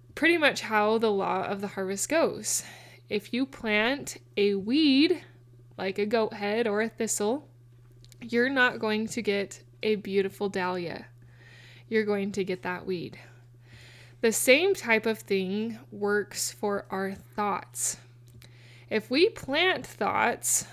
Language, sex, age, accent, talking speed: English, female, 20-39, American, 140 wpm